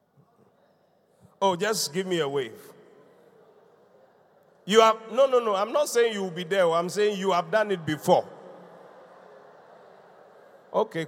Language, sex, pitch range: English, male, 190-315 Hz